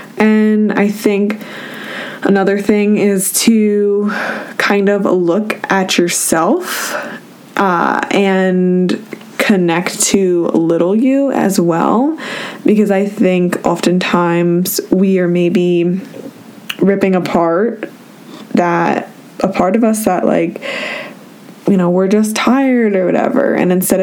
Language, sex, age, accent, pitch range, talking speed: English, female, 20-39, American, 180-230 Hz, 110 wpm